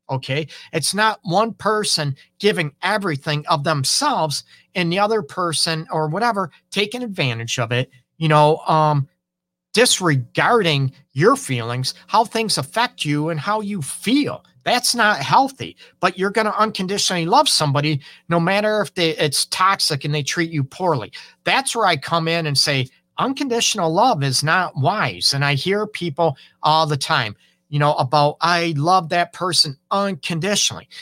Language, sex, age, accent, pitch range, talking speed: English, male, 40-59, American, 145-195 Hz, 155 wpm